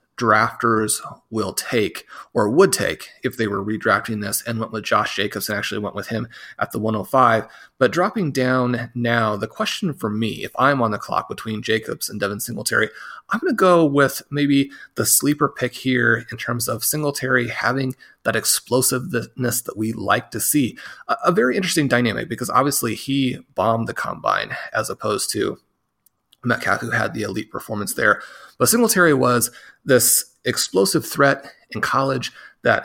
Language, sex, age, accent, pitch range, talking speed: English, male, 30-49, American, 110-135 Hz, 170 wpm